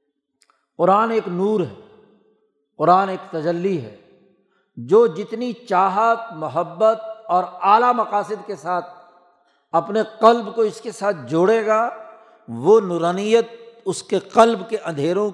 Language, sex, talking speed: Urdu, male, 125 wpm